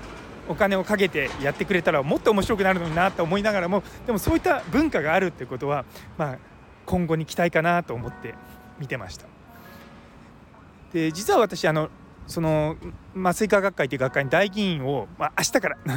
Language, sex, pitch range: Japanese, male, 135-200 Hz